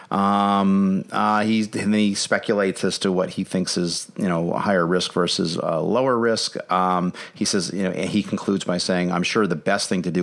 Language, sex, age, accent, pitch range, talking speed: English, male, 40-59, American, 85-105 Hz, 225 wpm